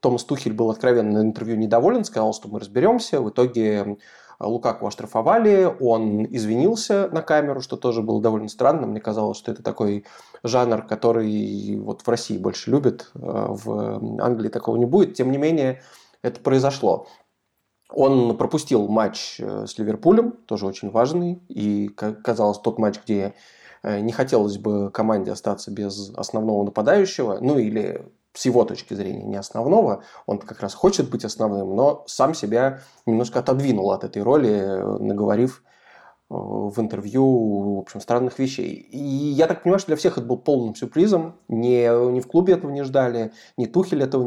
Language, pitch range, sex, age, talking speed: Russian, 105-135 Hz, male, 20-39, 155 wpm